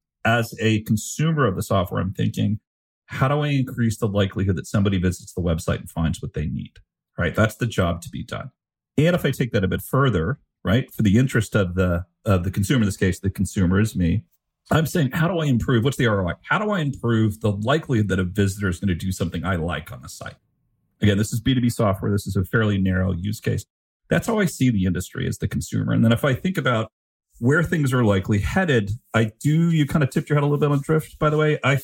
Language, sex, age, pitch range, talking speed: English, male, 40-59, 95-125 Hz, 250 wpm